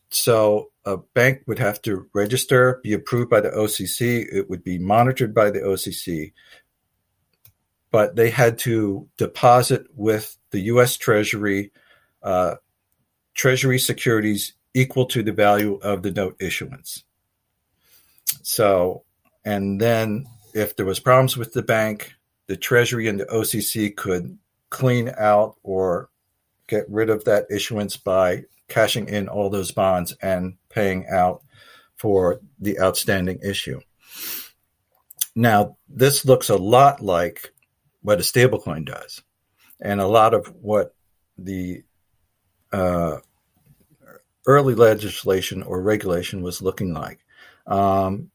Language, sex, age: English, male, 50-69